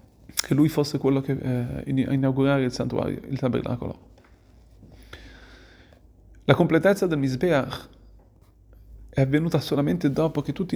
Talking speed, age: 110 wpm, 30-49